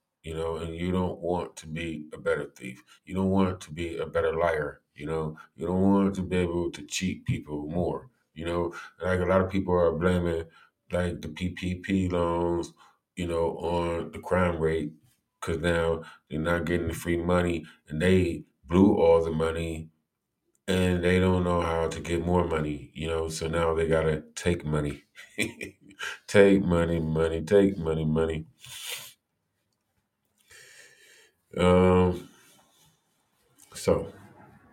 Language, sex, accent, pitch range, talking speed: English, male, American, 80-90 Hz, 155 wpm